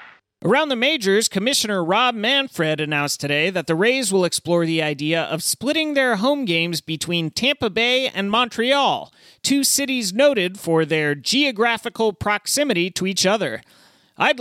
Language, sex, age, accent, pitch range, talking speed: English, male, 30-49, American, 160-240 Hz, 150 wpm